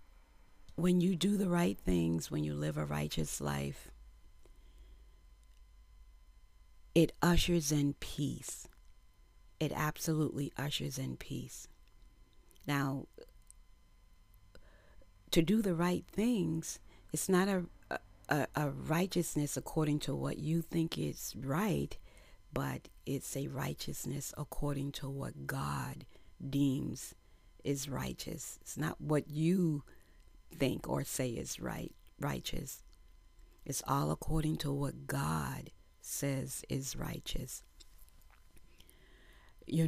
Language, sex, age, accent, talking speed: English, female, 40-59, American, 105 wpm